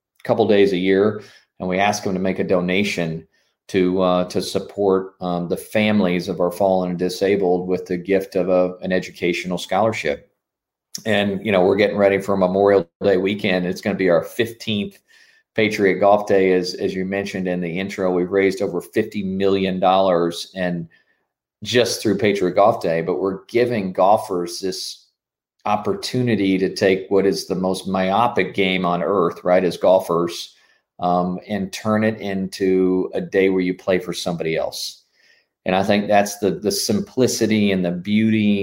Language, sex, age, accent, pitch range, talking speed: English, male, 40-59, American, 90-100 Hz, 170 wpm